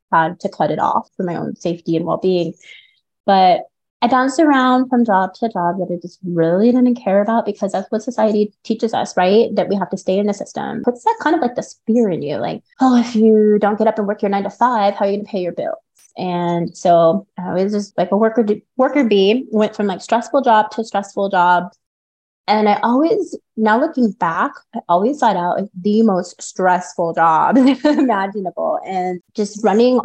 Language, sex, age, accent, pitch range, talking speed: English, female, 30-49, American, 180-225 Hz, 215 wpm